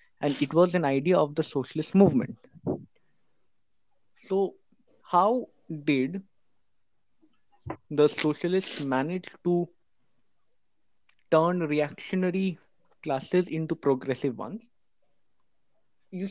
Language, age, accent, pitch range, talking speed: English, 20-39, Indian, 130-180 Hz, 85 wpm